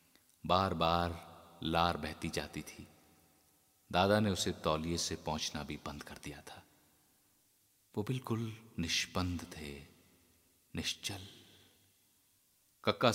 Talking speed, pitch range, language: 105 wpm, 85-105 Hz, Hindi